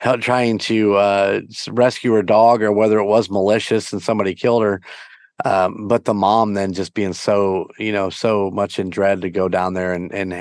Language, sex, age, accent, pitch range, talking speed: English, male, 30-49, American, 95-110 Hz, 200 wpm